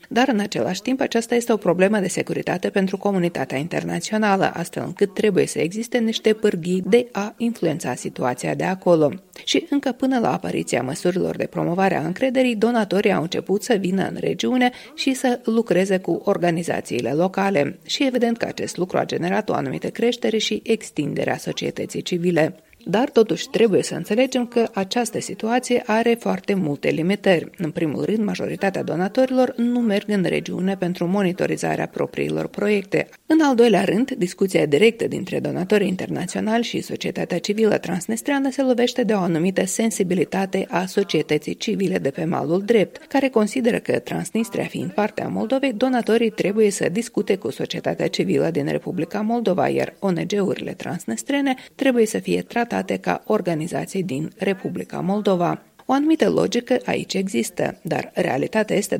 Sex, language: female, Romanian